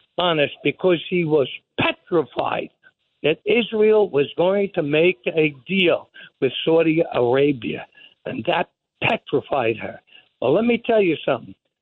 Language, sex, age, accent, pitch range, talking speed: English, male, 60-79, American, 175-225 Hz, 130 wpm